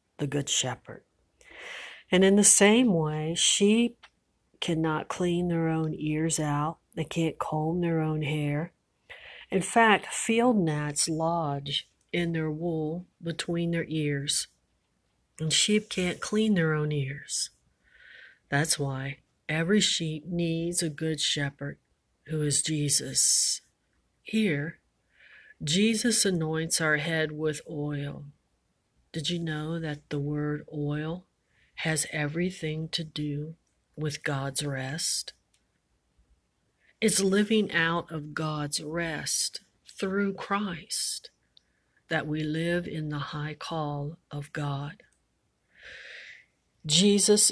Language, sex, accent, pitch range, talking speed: English, female, American, 150-185 Hz, 110 wpm